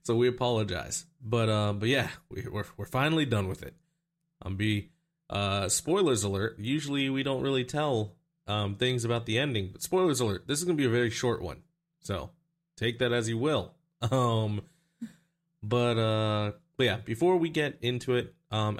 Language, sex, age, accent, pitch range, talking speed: English, male, 20-39, American, 110-165 Hz, 185 wpm